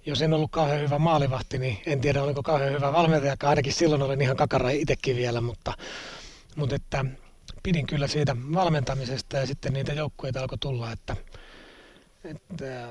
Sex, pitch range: male, 120-145 Hz